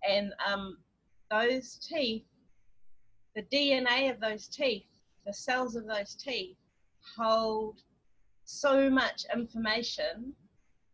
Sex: female